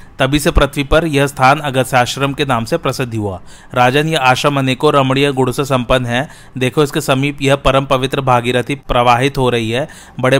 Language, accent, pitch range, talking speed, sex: Hindi, native, 125-145 Hz, 185 wpm, male